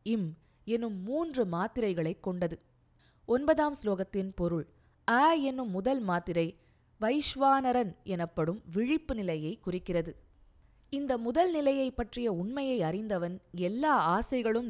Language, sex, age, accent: Tamil, female, 20-39, native